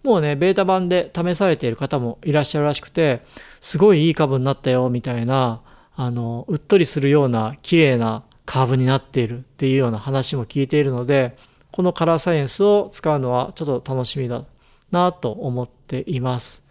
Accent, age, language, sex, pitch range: native, 40-59, Japanese, male, 130-170 Hz